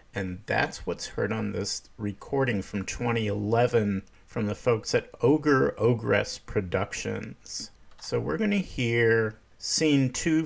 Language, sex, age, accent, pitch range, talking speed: English, male, 50-69, American, 105-125 Hz, 130 wpm